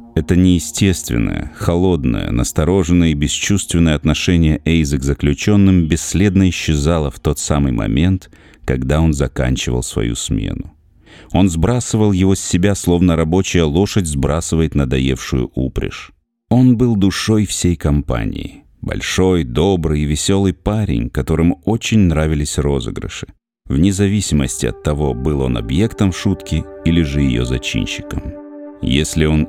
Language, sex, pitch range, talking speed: Russian, male, 75-100 Hz, 120 wpm